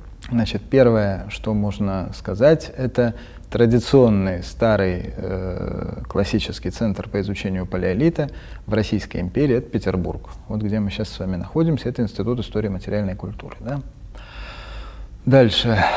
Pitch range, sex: 100-125 Hz, male